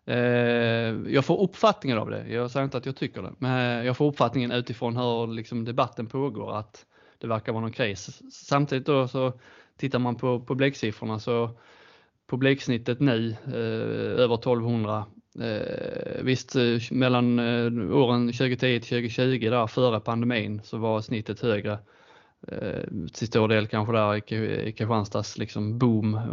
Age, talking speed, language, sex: 20-39, 140 wpm, Swedish, male